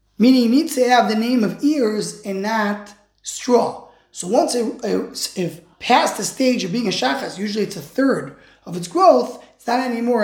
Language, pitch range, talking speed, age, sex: English, 200-270 Hz, 195 wpm, 20-39, male